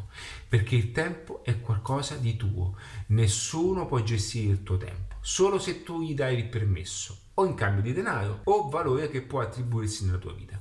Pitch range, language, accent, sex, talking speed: 100-145 Hz, Italian, native, male, 185 wpm